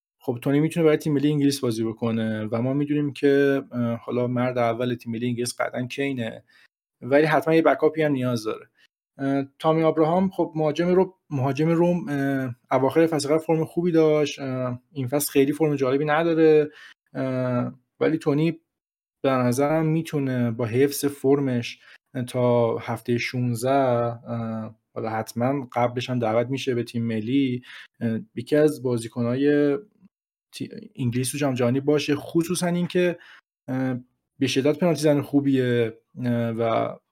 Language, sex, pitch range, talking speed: Persian, male, 125-155 Hz, 130 wpm